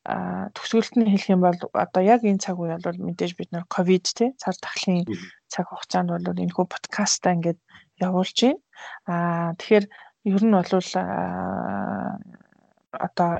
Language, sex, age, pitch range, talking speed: English, female, 20-39, 175-200 Hz, 145 wpm